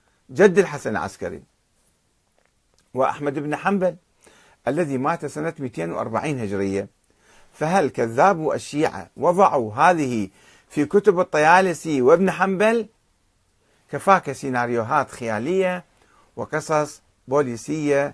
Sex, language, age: male, Arabic, 50-69